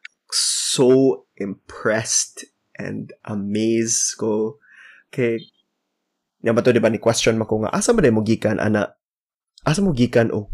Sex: male